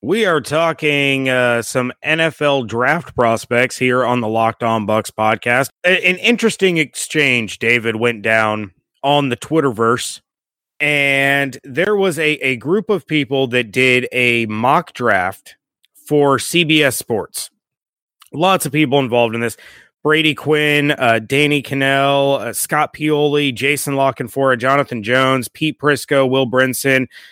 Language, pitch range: English, 120-150 Hz